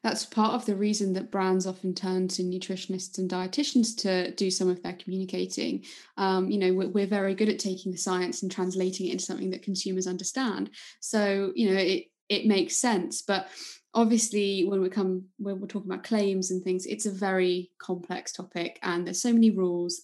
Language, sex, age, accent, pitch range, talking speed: English, female, 20-39, British, 185-210 Hz, 200 wpm